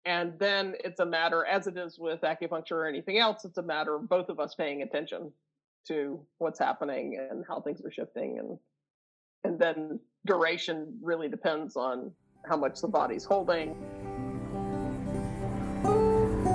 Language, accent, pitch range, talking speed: English, American, 160-210 Hz, 150 wpm